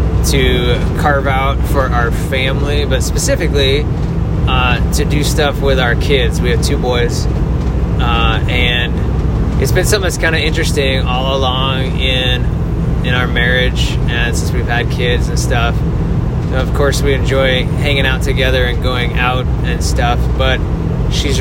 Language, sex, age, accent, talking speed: English, male, 20-39, American, 155 wpm